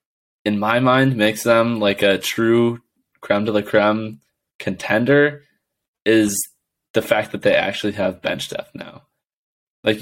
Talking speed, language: 145 wpm, English